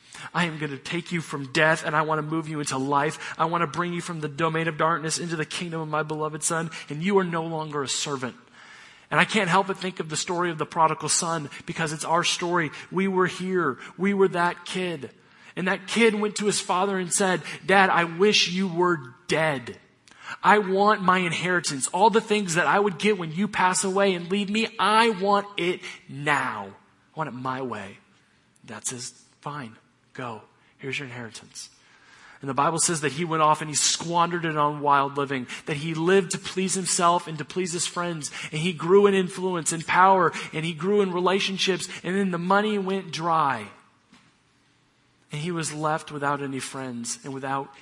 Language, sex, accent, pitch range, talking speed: English, male, American, 150-185 Hz, 210 wpm